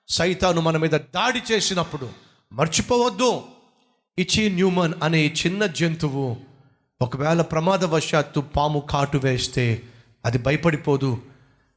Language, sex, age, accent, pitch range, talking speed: Telugu, male, 30-49, native, 125-170 Hz, 80 wpm